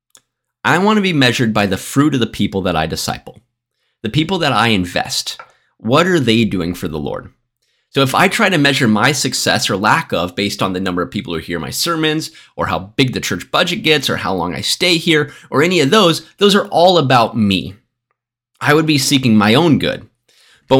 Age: 30-49